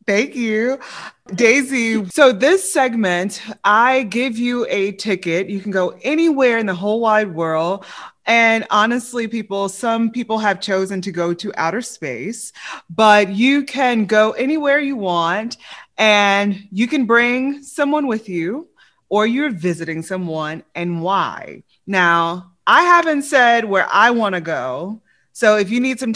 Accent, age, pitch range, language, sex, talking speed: American, 20-39, 180-235 Hz, English, female, 150 wpm